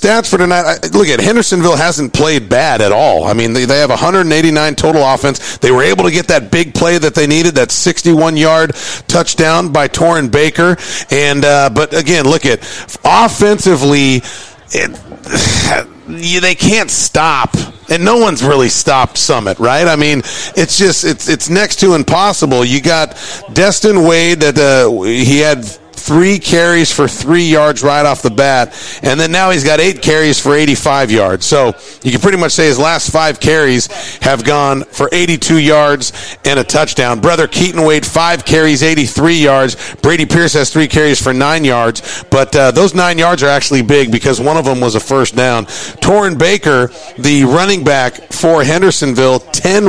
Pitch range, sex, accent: 135-170 Hz, male, American